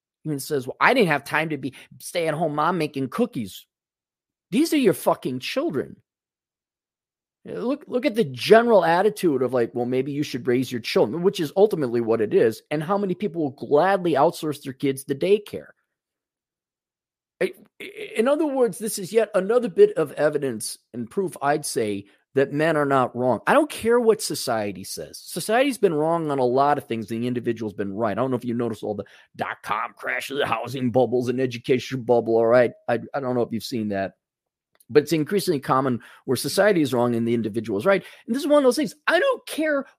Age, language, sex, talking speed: 30-49, English, male, 205 wpm